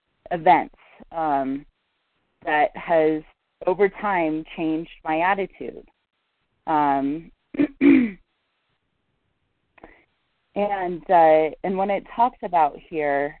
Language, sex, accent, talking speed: English, female, American, 80 wpm